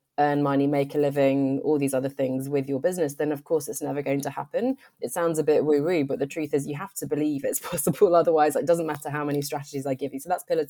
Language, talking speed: English, 270 wpm